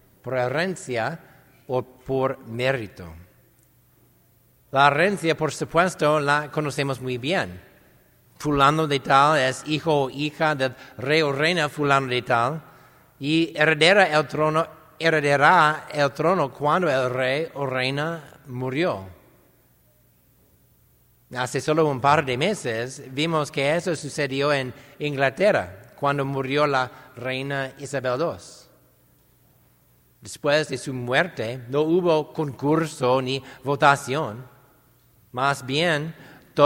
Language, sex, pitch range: English, male, 130-160 Hz